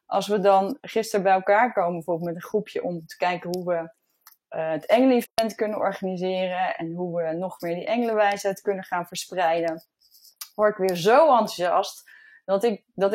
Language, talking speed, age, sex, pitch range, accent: Dutch, 180 wpm, 20-39, female, 175-220 Hz, Dutch